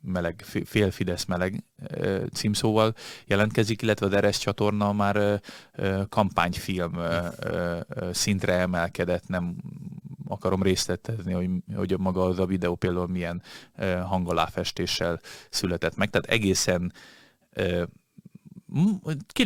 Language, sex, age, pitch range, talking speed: Hungarian, male, 30-49, 90-115 Hz, 95 wpm